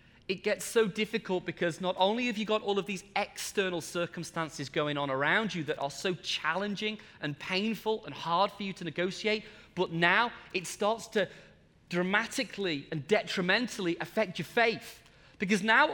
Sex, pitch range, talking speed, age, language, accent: male, 175-235 Hz, 165 wpm, 30-49, English, British